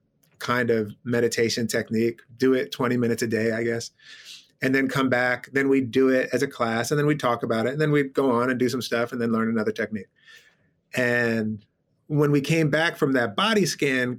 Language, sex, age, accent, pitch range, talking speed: English, male, 30-49, American, 120-150 Hz, 220 wpm